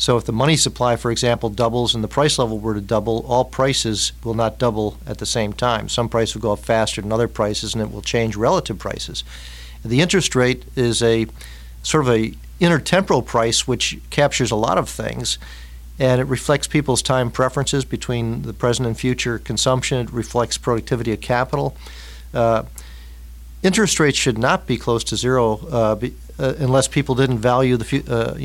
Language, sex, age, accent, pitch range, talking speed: English, male, 50-69, American, 110-130 Hz, 190 wpm